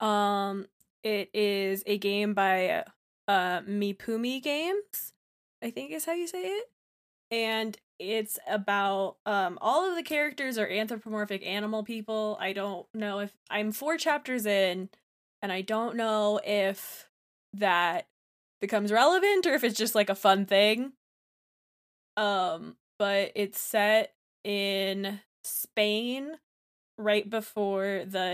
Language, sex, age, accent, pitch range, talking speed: English, female, 20-39, American, 195-220 Hz, 130 wpm